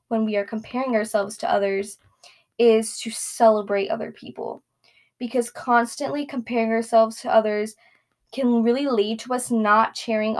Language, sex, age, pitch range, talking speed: English, female, 10-29, 220-240 Hz, 145 wpm